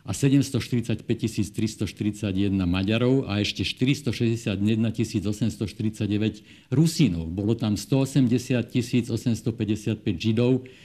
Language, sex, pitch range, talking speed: Slovak, male, 105-130 Hz, 75 wpm